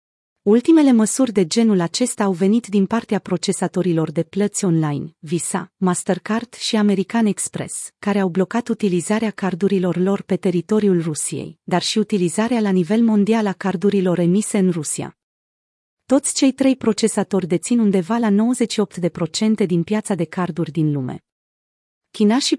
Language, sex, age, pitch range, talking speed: Romanian, female, 30-49, 175-220 Hz, 145 wpm